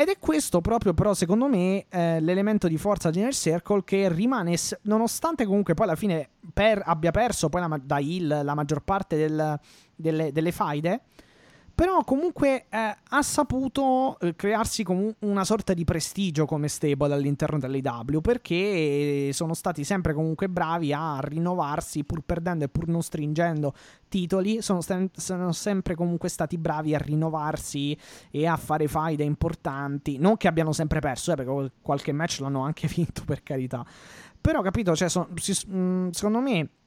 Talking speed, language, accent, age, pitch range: 155 wpm, Italian, native, 20-39, 150-190 Hz